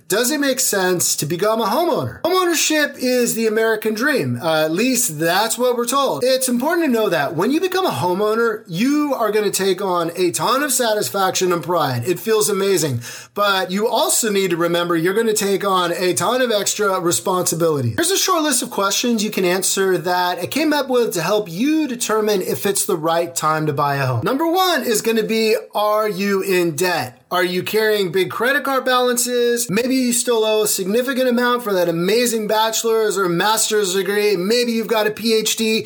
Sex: male